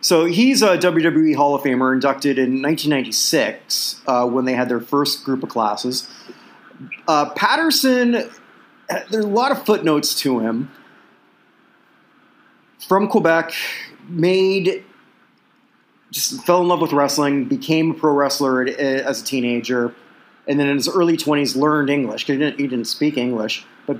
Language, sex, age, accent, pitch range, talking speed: English, male, 30-49, American, 130-180 Hz, 150 wpm